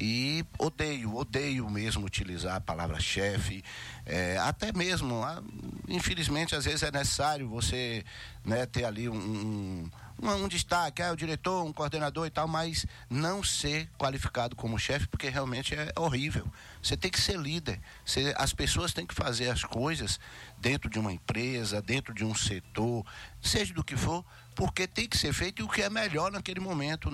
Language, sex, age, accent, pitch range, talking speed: Portuguese, male, 60-79, Brazilian, 105-140 Hz, 170 wpm